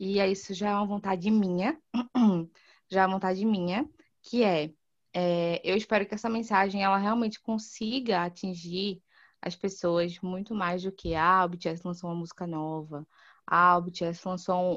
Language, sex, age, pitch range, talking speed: Portuguese, female, 20-39, 180-230 Hz, 165 wpm